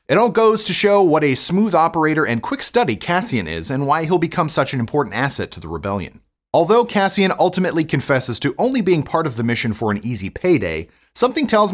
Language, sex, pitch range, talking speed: English, male, 115-180 Hz, 215 wpm